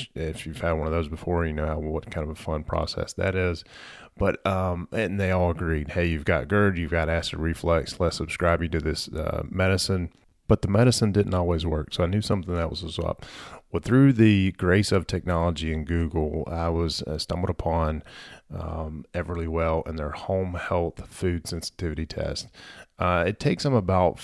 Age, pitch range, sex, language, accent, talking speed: 30-49, 80-90 Hz, male, English, American, 195 wpm